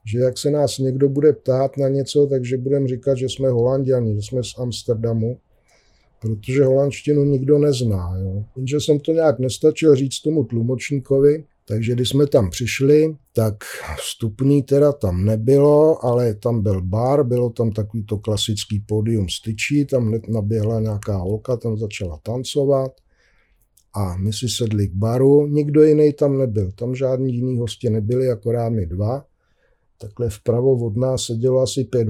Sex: male